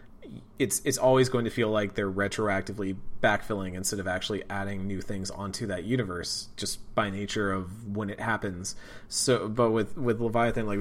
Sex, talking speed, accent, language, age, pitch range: male, 180 wpm, American, English, 30-49, 100-125 Hz